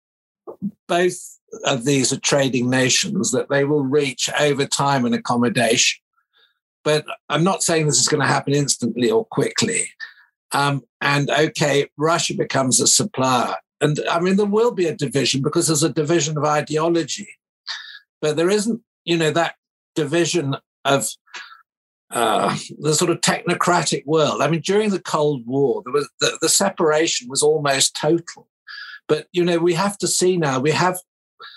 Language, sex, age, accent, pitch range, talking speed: English, male, 60-79, British, 140-175 Hz, 160 wpm